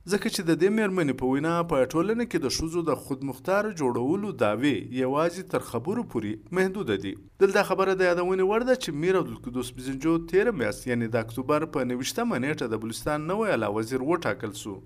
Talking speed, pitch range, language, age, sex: 190 wpm, 115-180 Hz, Urdu, 50-69, male